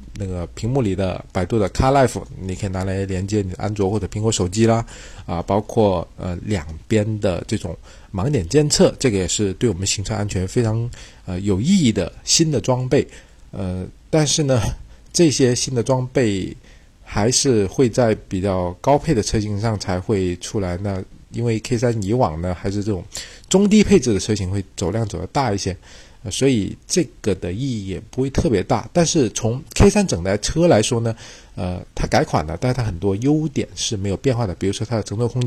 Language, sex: Chinese, male